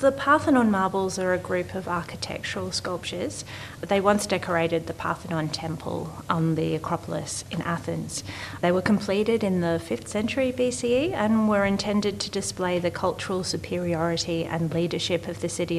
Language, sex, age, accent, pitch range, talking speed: English, female, 30-49, Australian, 160-180 Hz, 155 wpm